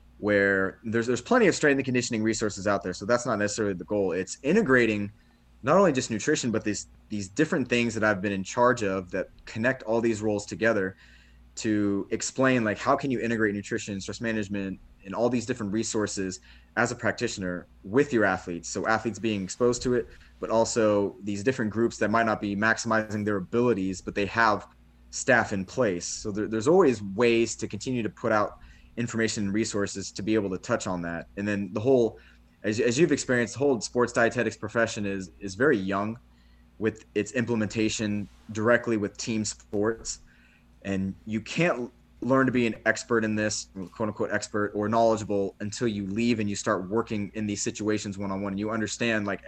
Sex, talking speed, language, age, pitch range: male, 190 wpm, English, 20-39, 95-115 Hz